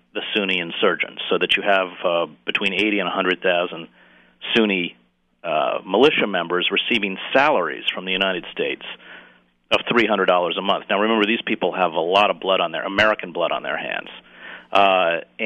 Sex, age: male, 40-59